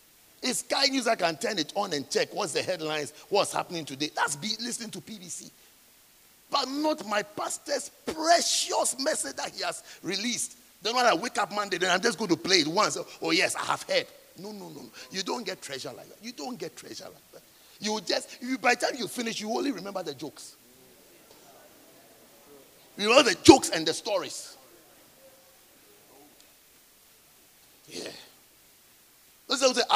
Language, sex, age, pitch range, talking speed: English, male, 50-69, 175-285 Hz, 180 wpm